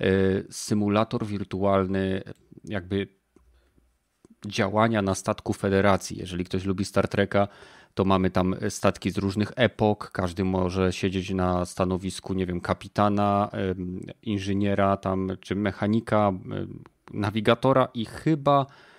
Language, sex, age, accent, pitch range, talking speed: Polish, male, 30-49, native, 95-115 Hz, 105 wpm